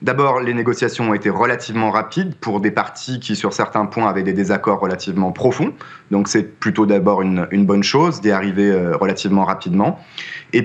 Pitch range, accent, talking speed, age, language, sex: 105-135 Hz, French, 185 wpm, 30-49, French, male